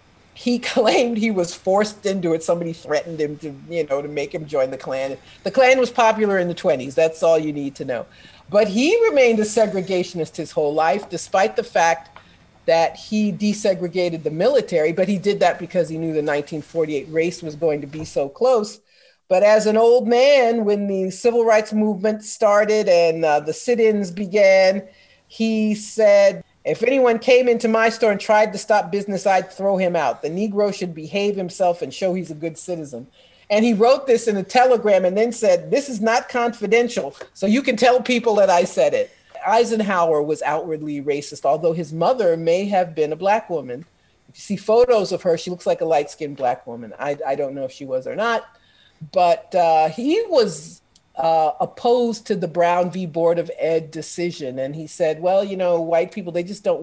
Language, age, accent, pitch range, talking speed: English, 50-69, American, 160-220 Hz, 200 wpm